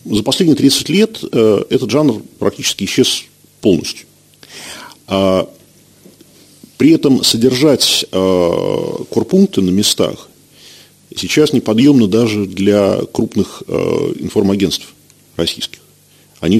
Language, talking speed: Russian, 95 wpm